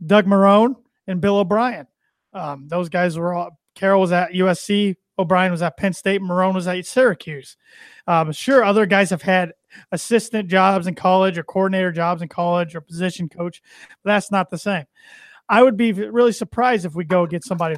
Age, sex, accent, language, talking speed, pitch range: 30-49, male, American, English, 190 wpm, 175-210 Hz